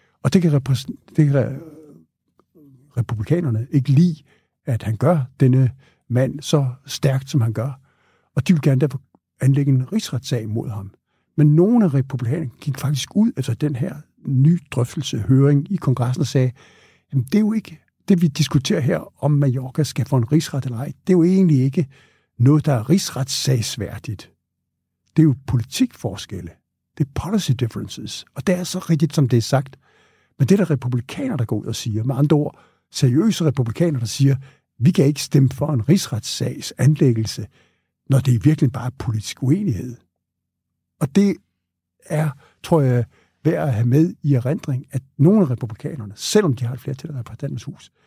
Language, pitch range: Danish, 120-150 Hz